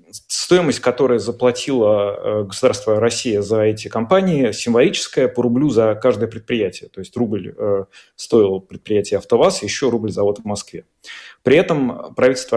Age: 30-49